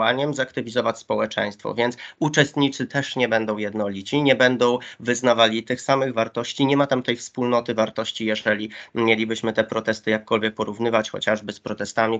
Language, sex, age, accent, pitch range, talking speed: Polish, male, 20-39, native, 110-130 Hz, 145 wpm